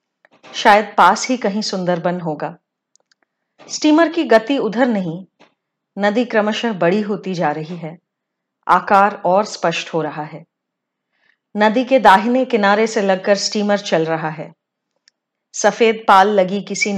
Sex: female